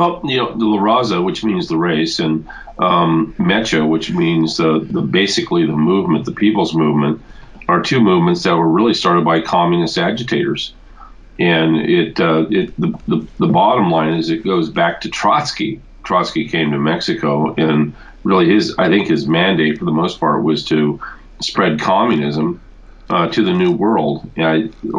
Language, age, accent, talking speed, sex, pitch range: English, 40-59, American, 180 wpm, male, 80-105 Hz